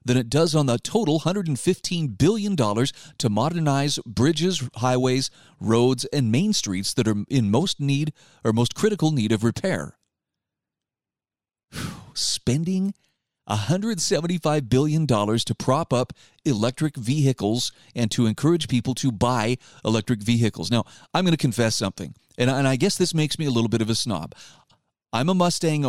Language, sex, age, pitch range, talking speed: English, male, 40-59, 115-150 Hz, 150 wpm